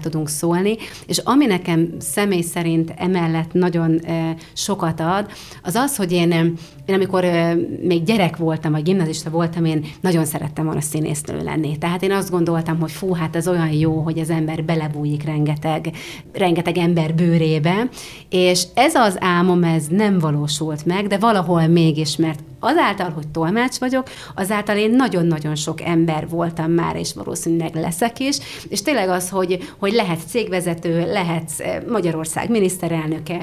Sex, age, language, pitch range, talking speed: female, 30-49, Hungarian, 165-195 Hz, 150 wpm